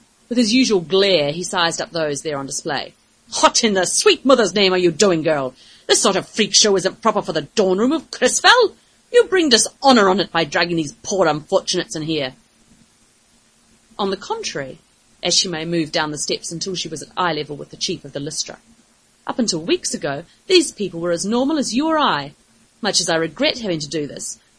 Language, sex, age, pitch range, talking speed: English, female, 30-49, 170-265 Hz, 215 wpm